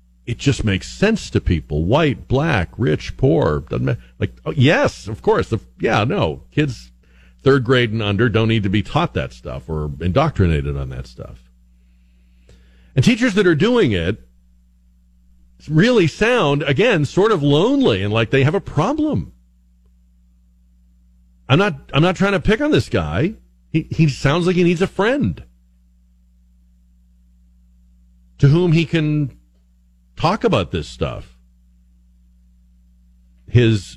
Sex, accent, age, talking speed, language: male, American, 50-69, 140 wpm, English